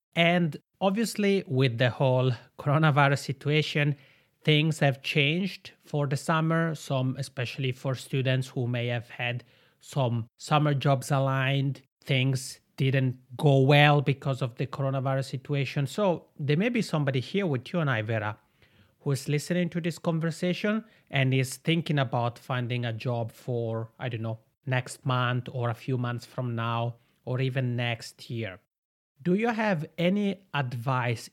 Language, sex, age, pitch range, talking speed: English, male, 30-49, 125-155 Hz, 150 wpm